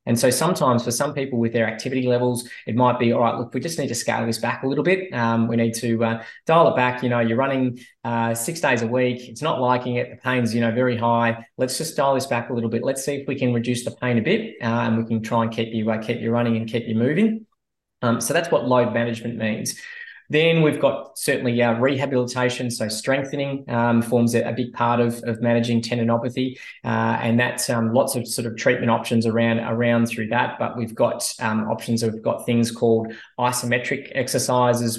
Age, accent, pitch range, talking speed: 20-39, Australian, 115-125 Hz, 230 wpm